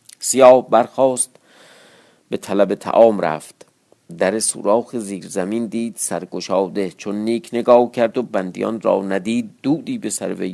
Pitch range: 95-120 Hz